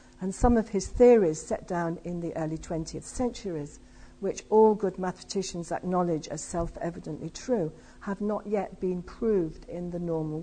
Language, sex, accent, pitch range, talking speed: English, female, British, 165-205 Hz, 160 wpm